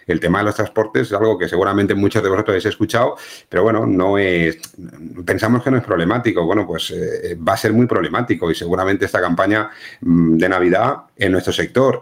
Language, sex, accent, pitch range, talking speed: Spanish, male, Spanish, 85-110 Hz, 200 wpm